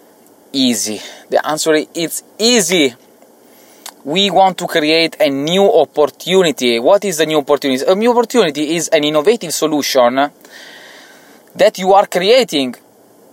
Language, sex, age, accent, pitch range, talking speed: English, male, 20-39, Italian, 140-190 Hz, 130 wpm